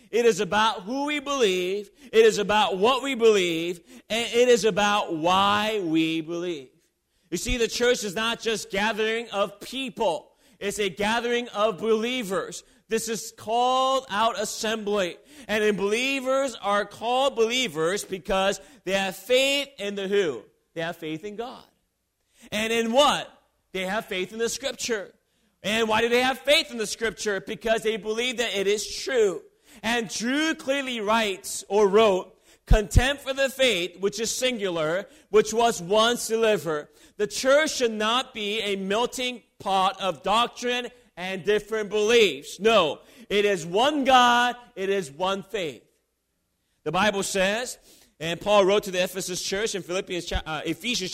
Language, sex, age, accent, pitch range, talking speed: English, male, 40-59, American, 195-240 Hz, 155 wpm